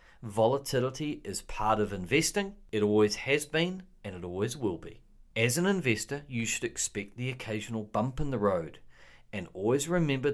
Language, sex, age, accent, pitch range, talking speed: English, male, 40-59, Australian, 105-145 Hz, 170 wpm